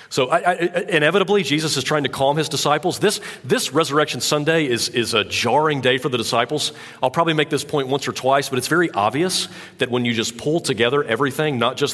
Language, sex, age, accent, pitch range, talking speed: English, male, 40-59, American, 120-155 Hz, 220 wpm